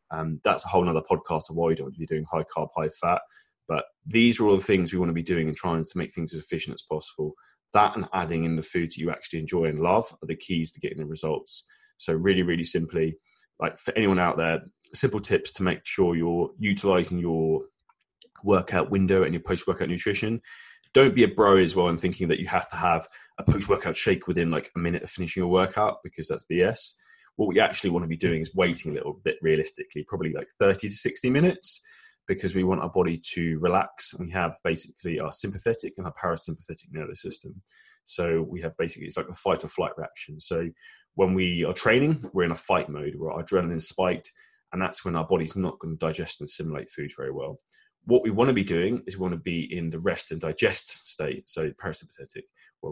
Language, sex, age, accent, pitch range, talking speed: English, male, 20-39, British, 80-105 Hz, 230 wpm